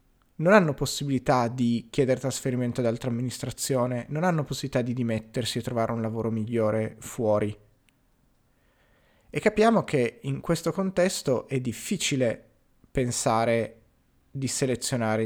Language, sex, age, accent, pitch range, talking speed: Italian, male, 30-49, native, 115-145 Hz, 120 wpm